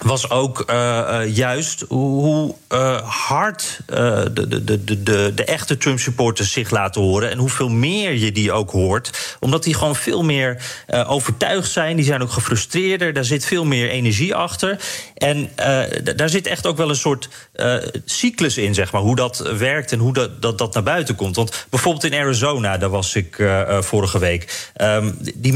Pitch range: 110-150 Hz